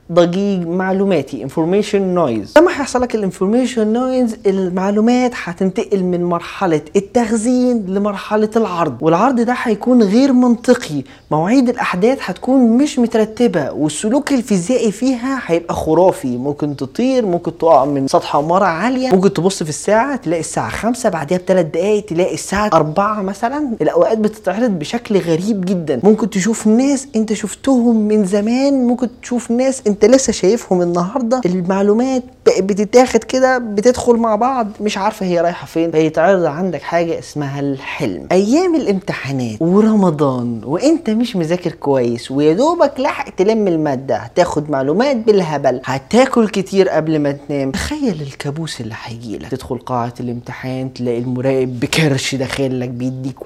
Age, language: 20-39, Arabic